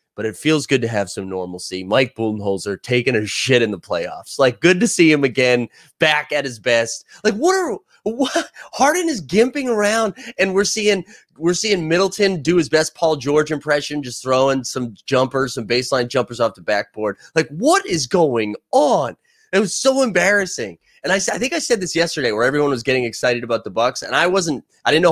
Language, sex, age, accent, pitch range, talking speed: English, male, 30-49, American, 120-180 Hz, 210 wpm